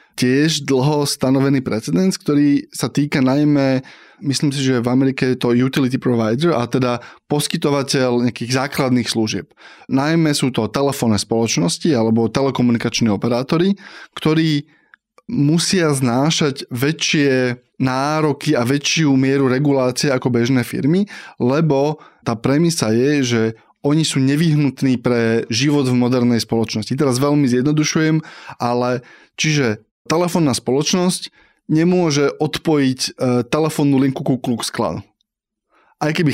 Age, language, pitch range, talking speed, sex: 20-39, Slovak, 125-155 Hz, 120 wpm, male